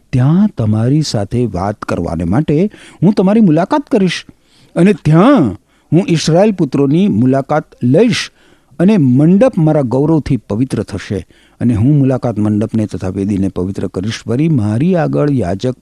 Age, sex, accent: 60-79, male, native